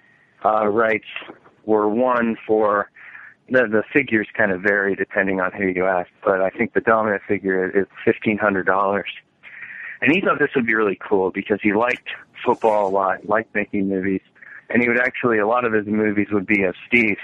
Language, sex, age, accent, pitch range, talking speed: English, male, 40-59, American, 95-115 Hz, 190 wpm